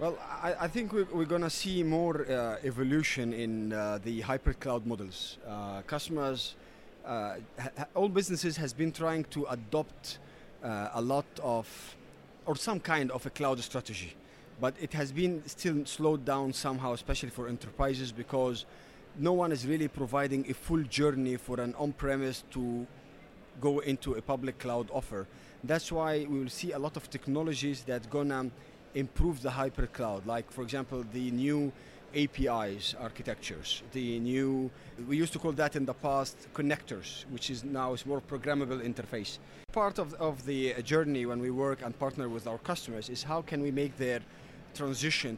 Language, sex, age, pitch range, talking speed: English, male, 30-49, 120-150 Hz, 170 wpm